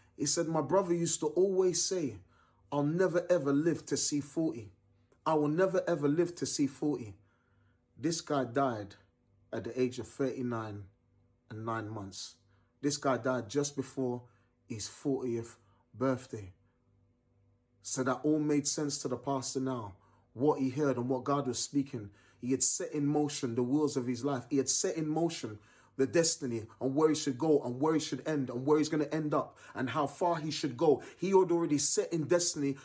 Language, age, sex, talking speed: English, 30-49, male, 190 wpm